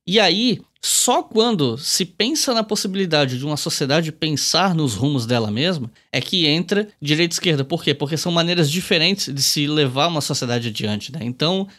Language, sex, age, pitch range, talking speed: Portuguese, male, 10-29, 135-180 Hz, 185 wpm